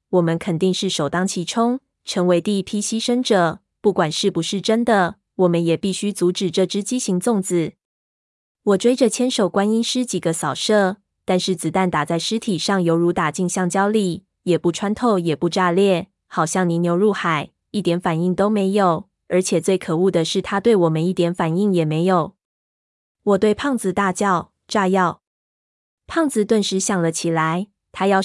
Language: Chinese